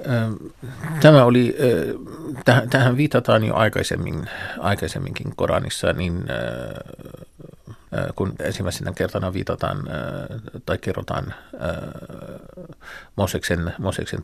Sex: male